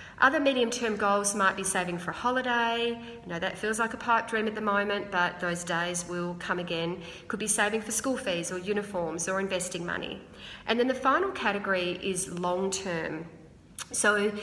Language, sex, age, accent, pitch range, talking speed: English, female, 40-59, Australian, 175-215 Hz, 185 wpm